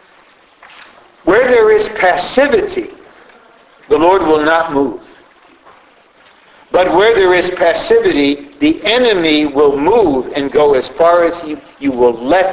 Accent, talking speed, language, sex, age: American, 125 wpm, English, male, 60-79